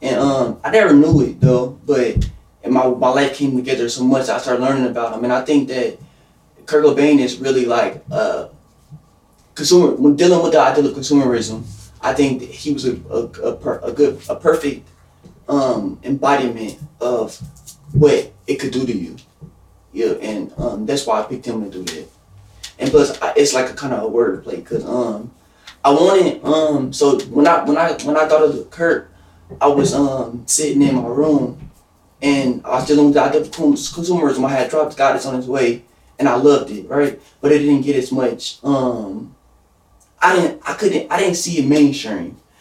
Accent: American